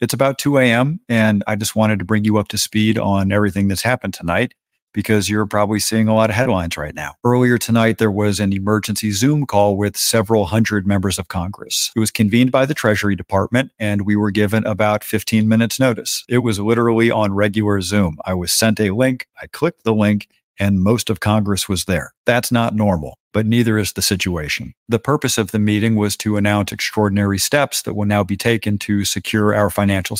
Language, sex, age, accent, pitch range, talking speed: English, male, 50-69, American, 100-115 Hz, 210 wpm